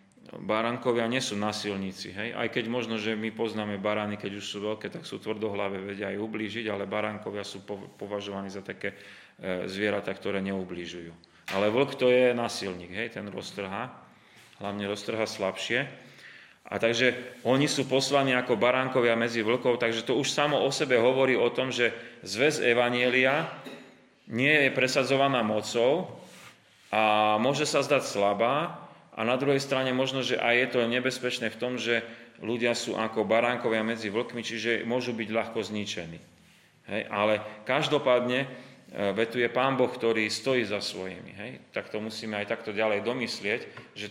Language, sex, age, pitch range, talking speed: Slovak, male, 30-49, 105-125 Hz, 155 wpm